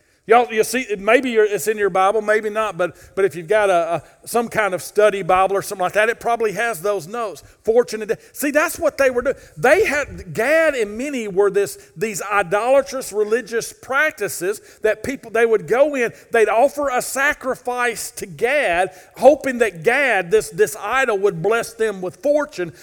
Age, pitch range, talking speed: 40-59, 205-265 Hz, 190 wpm